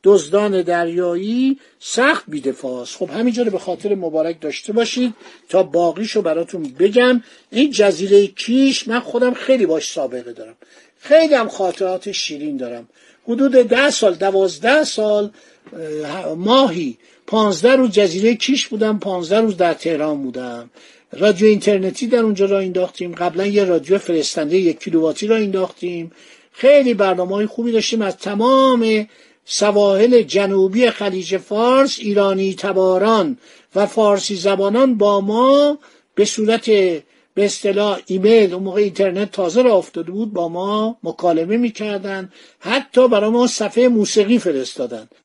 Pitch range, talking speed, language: 180-235 Hz, 125 wpm, Persian